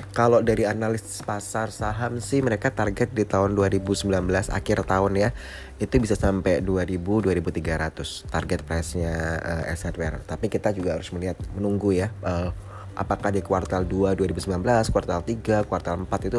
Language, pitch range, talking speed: Indonesian, 90-100 Hz, 150 wpm